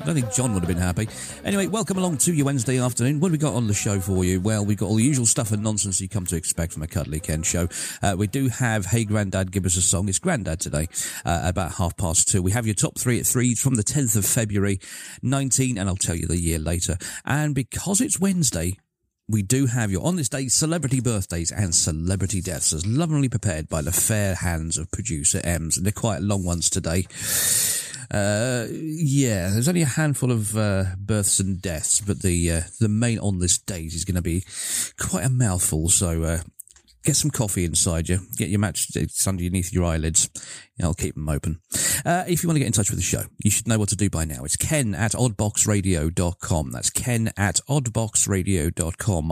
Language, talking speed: English, 225 wpm